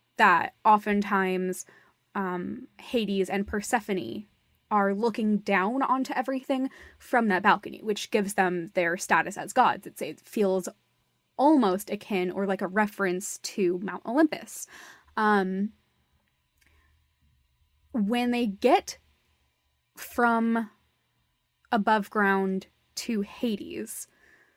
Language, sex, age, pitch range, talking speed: English, female, 20-39, 200-255 Hz, 100 wpm